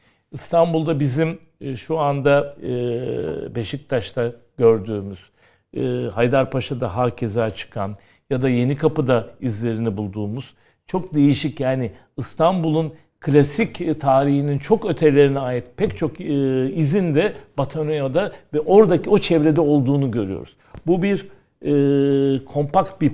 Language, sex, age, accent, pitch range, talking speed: Turkish, male, 60-79, native, 120-155 Hz, 105 wpm